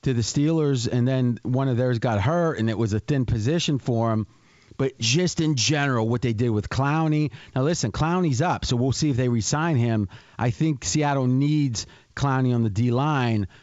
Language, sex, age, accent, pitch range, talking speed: English, male, 40-59, American, 115-140 Hz, 205 wpm